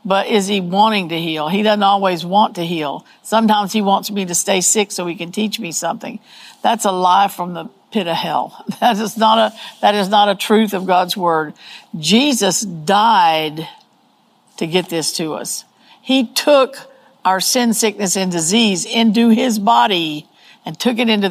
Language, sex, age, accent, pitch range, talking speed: English, female, 60-79, American, 180-215 Hz, 185 wpm